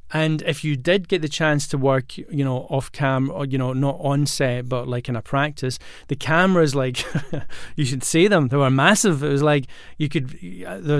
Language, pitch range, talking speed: English, 135-175 Hz, 220 wpm